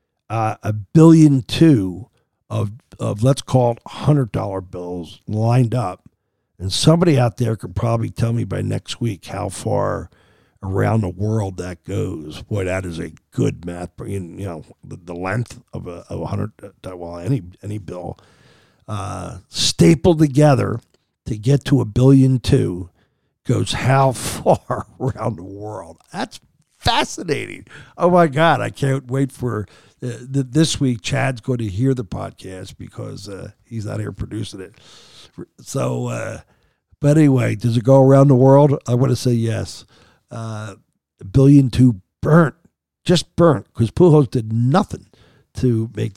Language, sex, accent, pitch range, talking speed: English, male, American, 100-135 Hz, 155 wpm